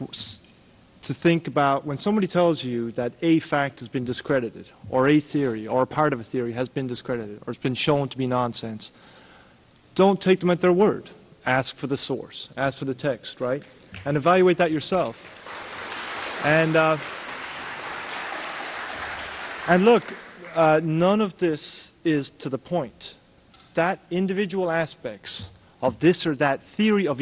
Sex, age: male, 30-49